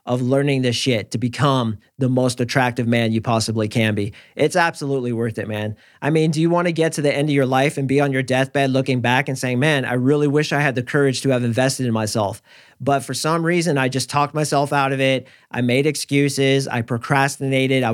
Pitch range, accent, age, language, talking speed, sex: 125-145 Hz, American, 40-59, English, 240 wpm, male